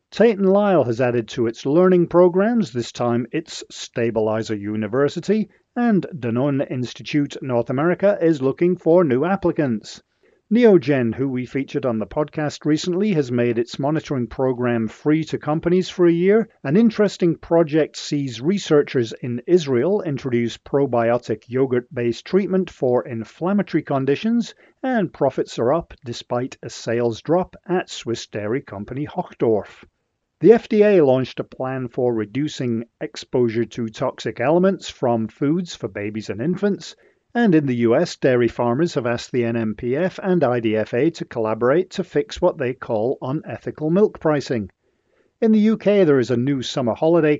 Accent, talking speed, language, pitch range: British, 150 wpm, English, 120-180 Hz